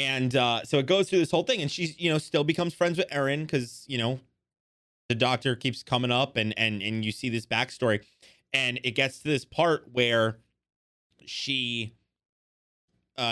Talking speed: 190 wpm